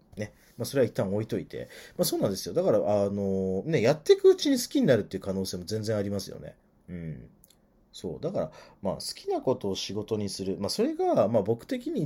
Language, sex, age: Japanese, male, 40-59